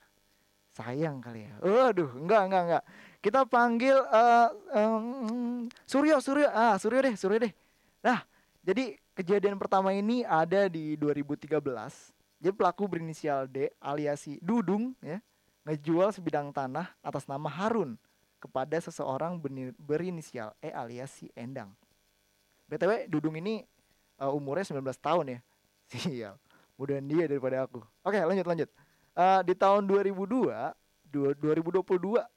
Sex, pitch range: male, 115-180 Hz